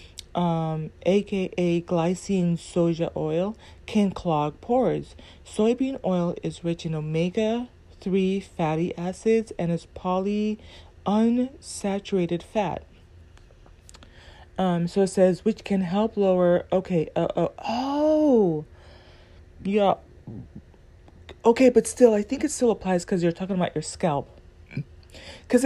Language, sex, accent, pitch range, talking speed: English, female, American, 160-210 Hz, 110 wpm